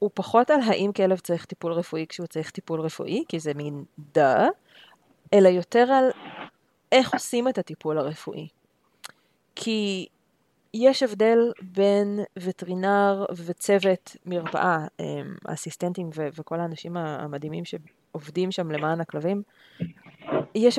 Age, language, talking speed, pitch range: 30-49, Hebrew, 120 wpm, 165-210 Hz